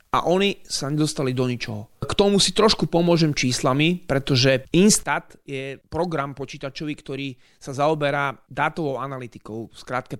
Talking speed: 135 wpm